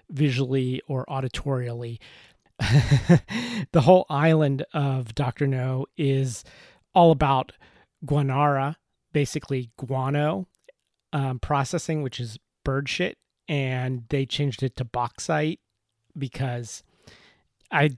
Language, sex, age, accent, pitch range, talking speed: English, male, 30-49, American, 125-145 Hz, 95 wpm